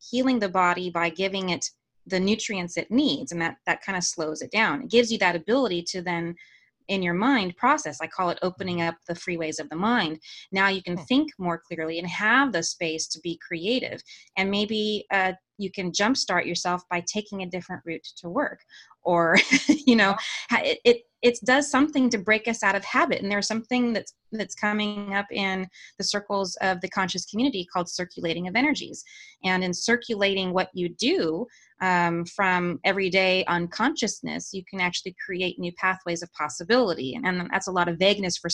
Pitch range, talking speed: 170-210 Hz, 195 wpm